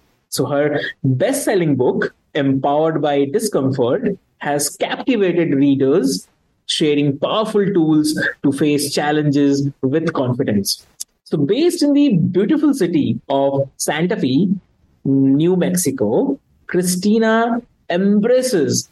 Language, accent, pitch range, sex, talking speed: English, Indian, 140-190 Hz, male, 100 wpm